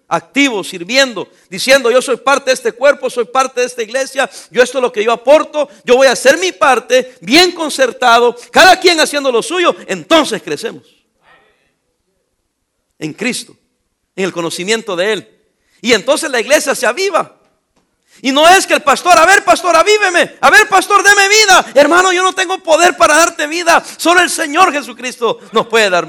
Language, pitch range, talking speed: English, 220-315 Hz, 180 wpm